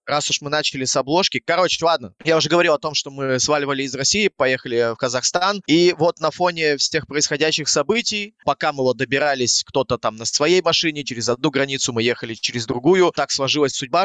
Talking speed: 200 wpm